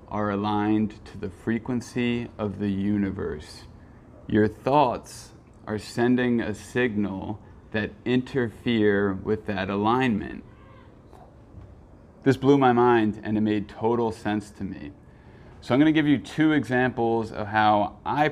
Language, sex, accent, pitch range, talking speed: English, male, American, 105-125 Hz, 130 wpm